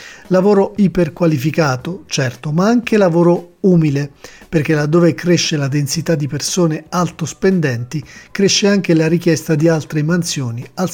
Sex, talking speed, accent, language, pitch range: male, 130 wpm, native, Italian, 140-175 Hz